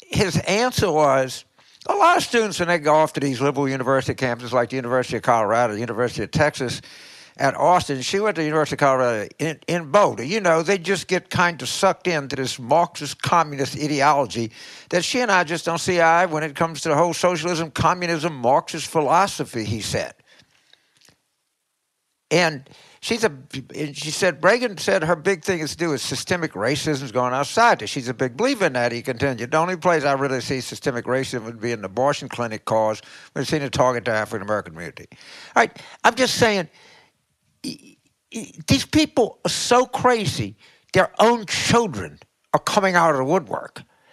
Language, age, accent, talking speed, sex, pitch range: English, 60-79, American, 185 wpm, male, 130-190 Hz